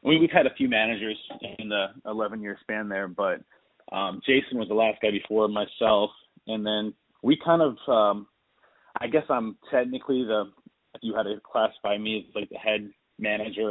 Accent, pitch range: American, 105-125 Hz